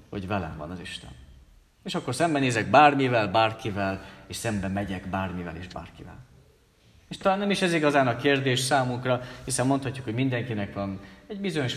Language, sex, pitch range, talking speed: Hungarian, male, 100-135 Hz, 165 wpm